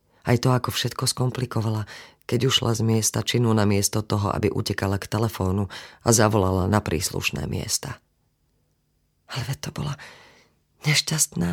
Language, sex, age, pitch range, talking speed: Slovak, female, 40-59, 110-140 Hz, 135 wpm